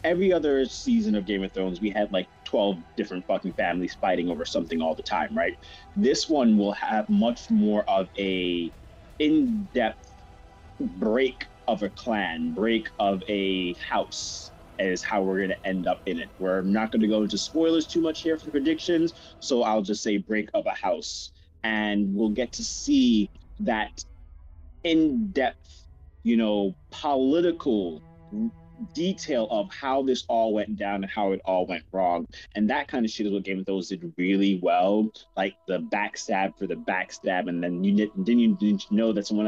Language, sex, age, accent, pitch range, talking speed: English, male, 30-49, American, 95-125 Hz, 175 wpm